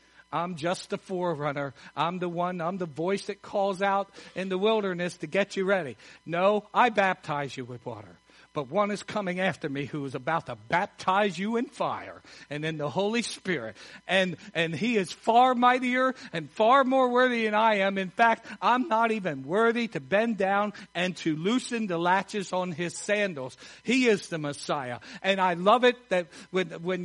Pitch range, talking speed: 185-245 Hz, 190 wpm